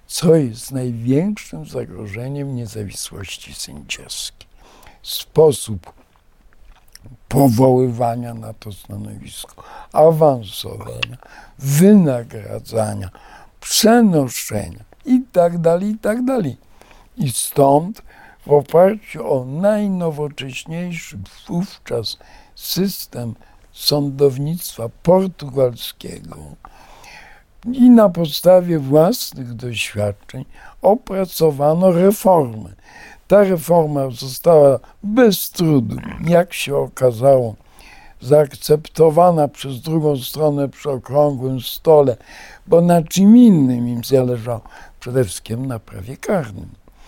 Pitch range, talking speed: 120-170 Hz, 75 wpm